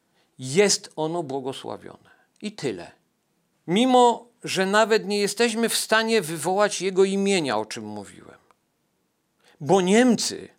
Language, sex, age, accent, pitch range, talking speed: Polish, male, 50-69, native, 150-205 Hz, 115 wpm